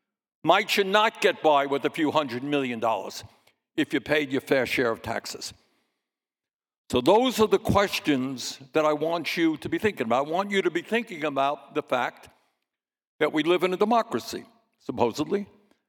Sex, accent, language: male, American, English